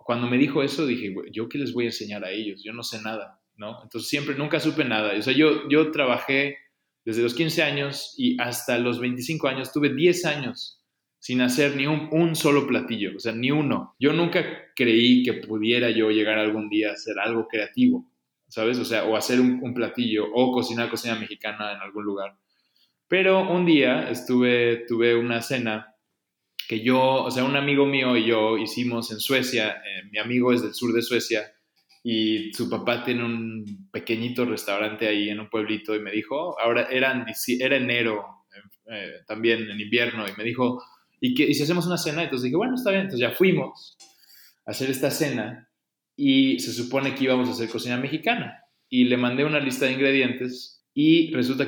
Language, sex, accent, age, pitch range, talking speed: Spanish, male, Mexican, 20-39, 110-140 Hz, 195 wpm